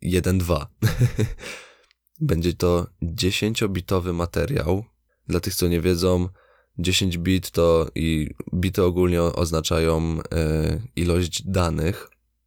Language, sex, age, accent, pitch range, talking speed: Polish, male, 20-39, native, 80-90 Hz, 95 wpm